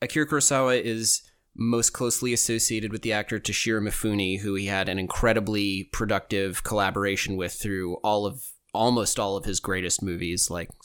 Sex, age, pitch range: male, 20-39, 100-115 Hz